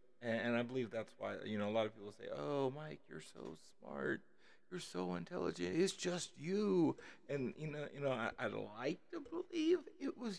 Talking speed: 210 wpm